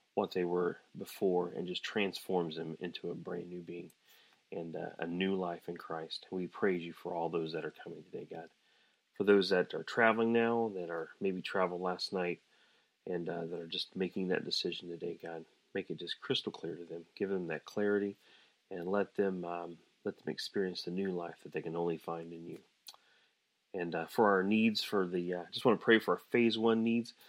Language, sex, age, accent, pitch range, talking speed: English, male, 30-49, American, 90-115 Hz, 220 wpm